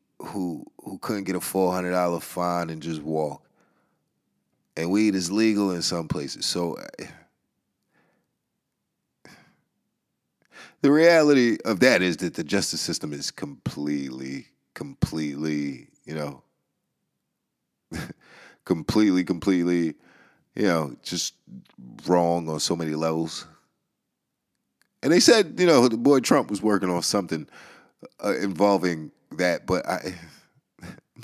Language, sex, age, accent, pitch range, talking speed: English, male, 30-49, American, 80-100 Hz, 115 wpm